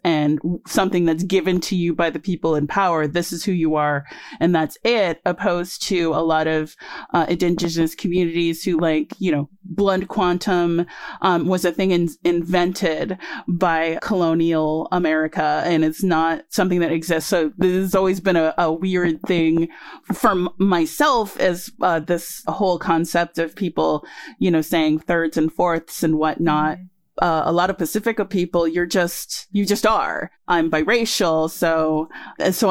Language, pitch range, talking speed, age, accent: English, 165-190 Hz, 165 wpm, 30-49, American